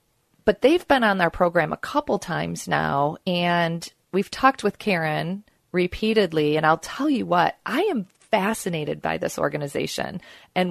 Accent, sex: American, female